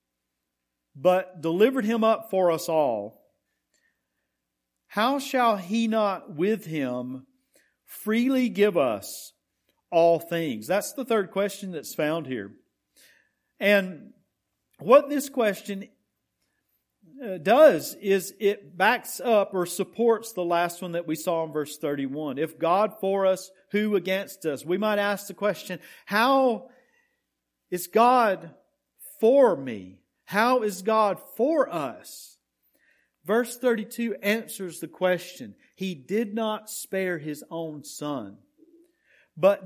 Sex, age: male, 50-69